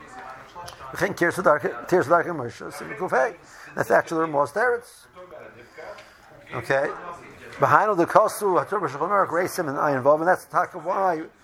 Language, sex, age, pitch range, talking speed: English, male, 60-79, 155-200 Hz, 95 wpm